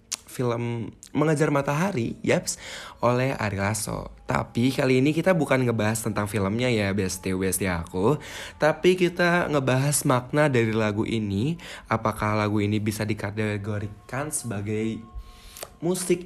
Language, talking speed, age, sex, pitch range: Indonesian, 120 wpm, 20-39, male, 110-150 Hz